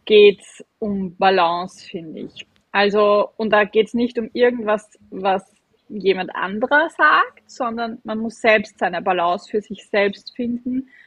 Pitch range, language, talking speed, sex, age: 195-235 Hz, German, 150 wpm, female, 20-39